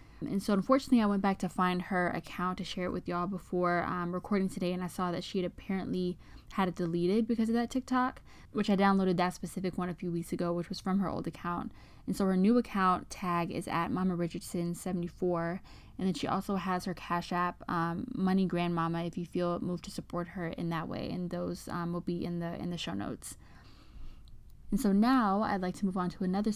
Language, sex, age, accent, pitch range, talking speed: English, female, 10-29, American, 175-200 Hz, 230 wpm